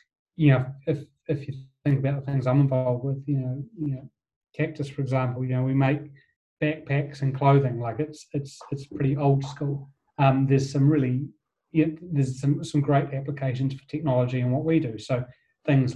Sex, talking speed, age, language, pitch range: male, 195 wpm, 30-49, English, 130-145 Hz